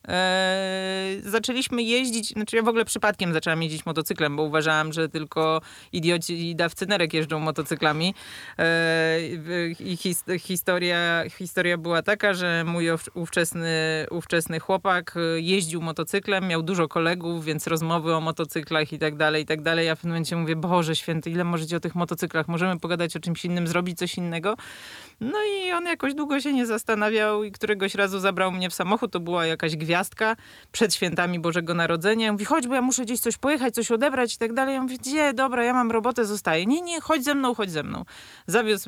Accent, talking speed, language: native, 185 wpm, Polish